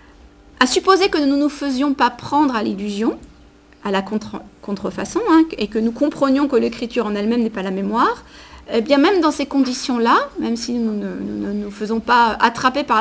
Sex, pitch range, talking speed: female, 215-275 Hz, 210 wpm